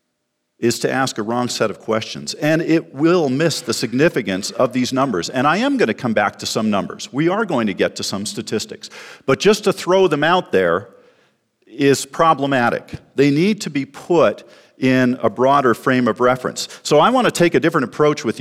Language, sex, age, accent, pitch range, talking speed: English, male, 50-69, American, 125-160 Hz, 200 wpm